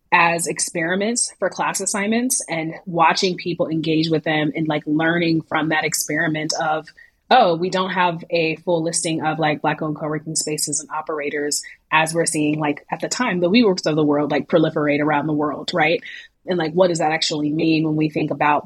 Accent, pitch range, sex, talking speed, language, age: American, 155-180 Hz, female, 200 wpm, English, 30-49